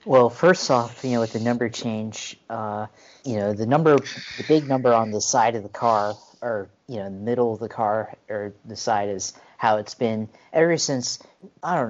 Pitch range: 105-125 Hz